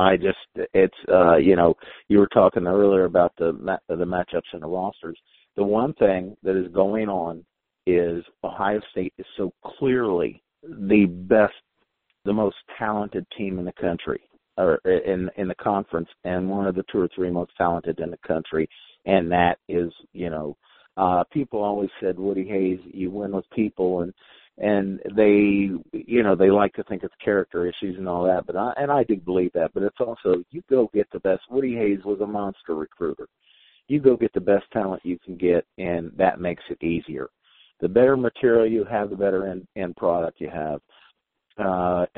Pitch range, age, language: 90-105 Hz, 50-69, English